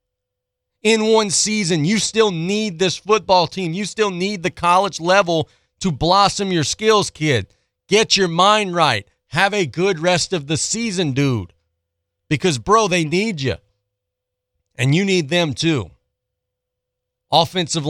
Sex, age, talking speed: male, 40-59, 145 wpm